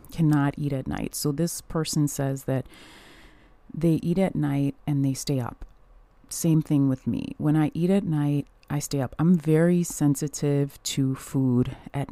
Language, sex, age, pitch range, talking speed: English, female, 30-49, 140-170 Hz, 175 wpm